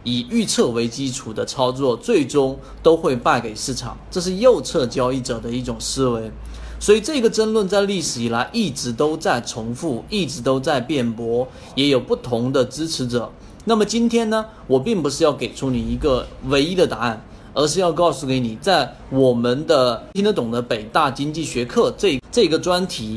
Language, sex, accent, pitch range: Chinese, male, native, 120-185 Hz